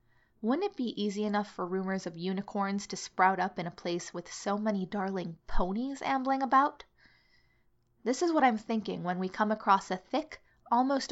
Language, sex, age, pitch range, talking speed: English, female, 20-39, 185-225 Hz, 185 wpm